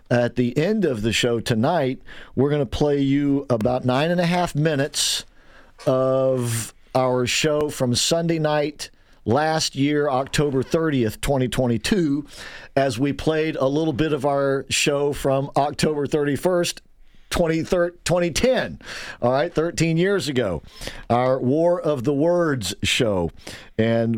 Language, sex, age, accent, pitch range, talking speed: English, male, 50-69, American, 125-155 Hz, 135 wpm